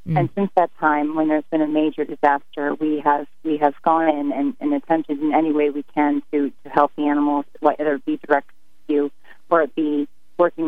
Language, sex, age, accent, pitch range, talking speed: English, female, 30-49, American, 145-165 Hz, 215 wpm